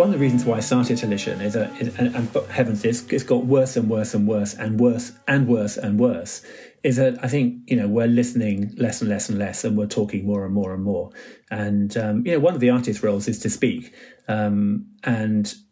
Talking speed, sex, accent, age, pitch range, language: 245 wpm, male, British, 30-49, 105-125 Hz, English